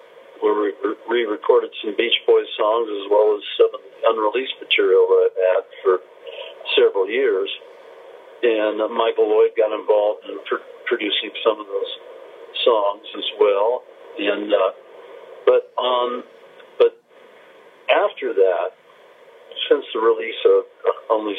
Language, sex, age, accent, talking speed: English, male, 50-69, American, 130 wpm